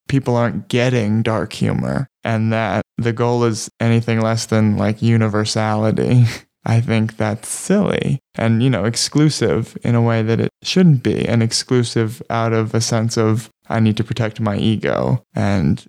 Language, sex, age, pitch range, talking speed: English, male, 20-39, 110-125 Hz, 165 wpm